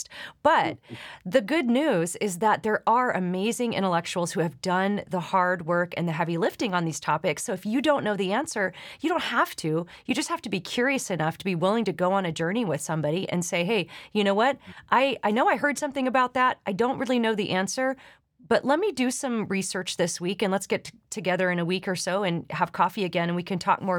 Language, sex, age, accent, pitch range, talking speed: English, female, 30-49, American, 175-225 Hz, 245 wpm